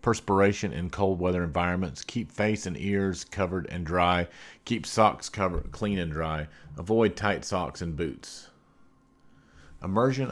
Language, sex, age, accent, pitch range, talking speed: English, male, 40-59, American, 85-100 Hz, 135 wpm